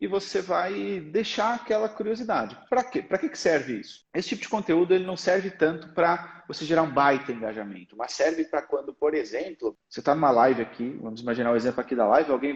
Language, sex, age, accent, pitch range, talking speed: Portuguese, male, 40-59, Brazilian, 130-180 Hz, 220 wpm